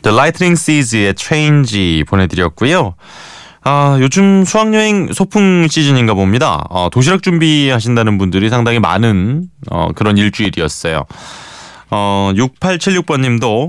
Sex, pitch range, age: male, 95-130 Hz, 20-39